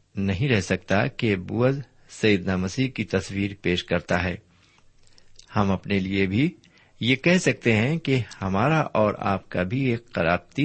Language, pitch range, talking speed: Urdu, 95-120 Hz, 160 wpm